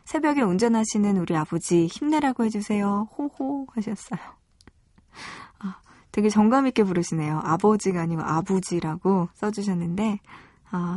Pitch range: 185-235 Hz